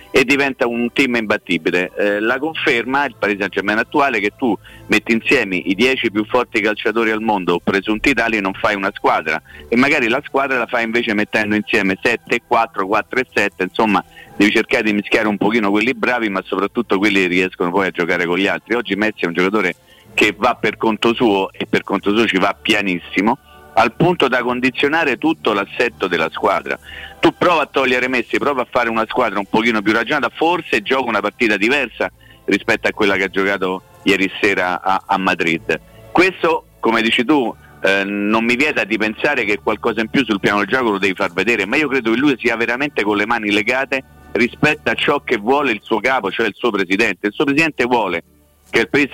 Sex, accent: male, native